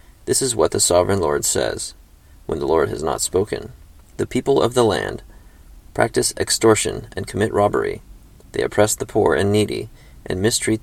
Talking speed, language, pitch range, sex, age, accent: 170 wpm, English, 95-110 Hz, male, 30-49, American